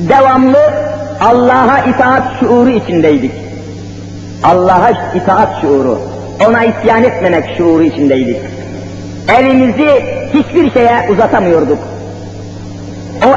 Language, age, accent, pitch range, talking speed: Turkish, 50-69, native, 165-275 Hz, 80 wpm